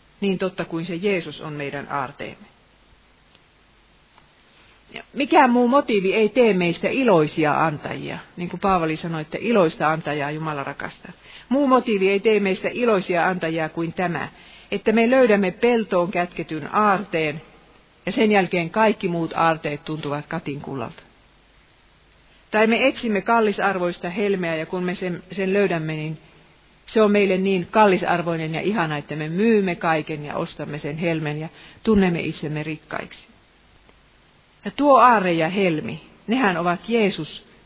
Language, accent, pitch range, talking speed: Finnish, native, 160-205 Hz, 140 wpm